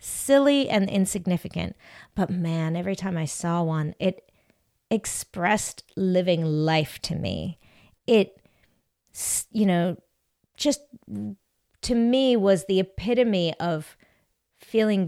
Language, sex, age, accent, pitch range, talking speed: English, female, 30-49, American, 170-235 Hz, 105 wpm